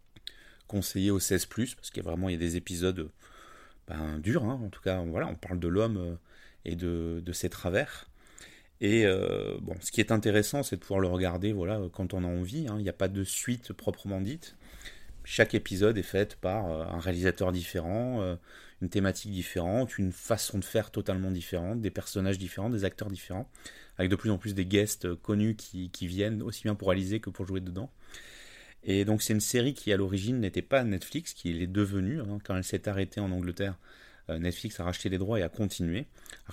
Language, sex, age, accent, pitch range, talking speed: French, male, 30-49, French, 90-105 Hz, 210 wpm